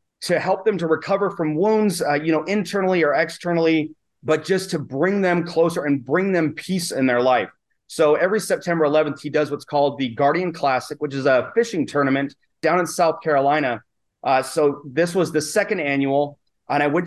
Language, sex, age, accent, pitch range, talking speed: English, male, 30-49, American, 140-170 Hz, 195 wpm